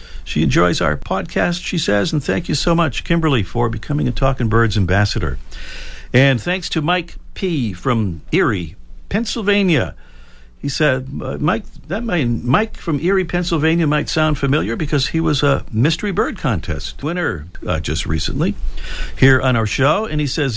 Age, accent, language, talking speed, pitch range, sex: 60-79, American, English, 165 wpm, 95-145 Hz, male